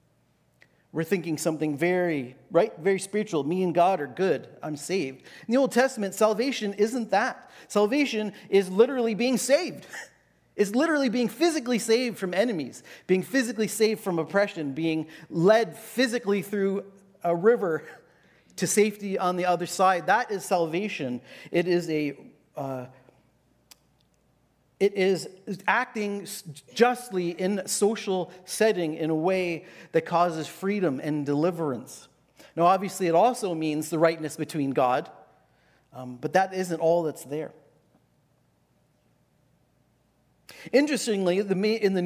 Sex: male